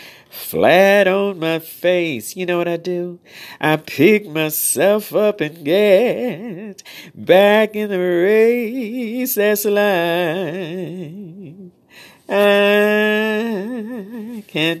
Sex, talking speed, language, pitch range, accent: male, 95 wpm, English, 155-210 Hz, American